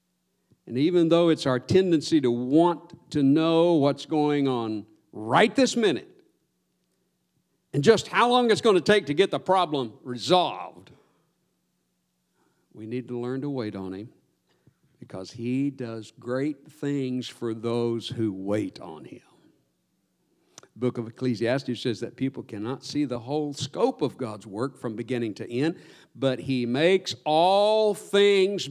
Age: 60-79